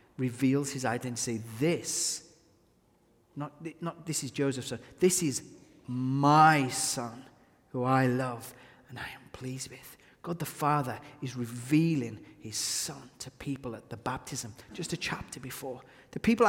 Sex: male